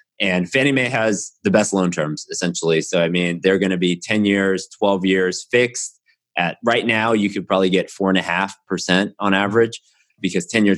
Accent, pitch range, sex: American, 90-105 Hz, male